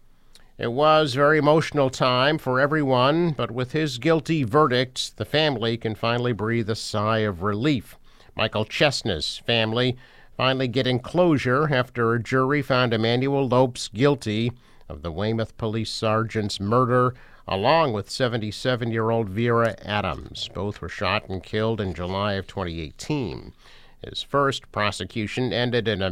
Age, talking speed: 50-69, 140 wpm